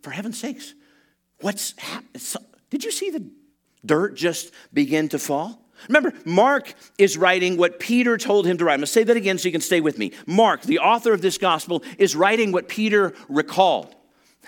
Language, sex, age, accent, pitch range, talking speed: English, male, 50-69, American, 170-230 Hz, 190 wpm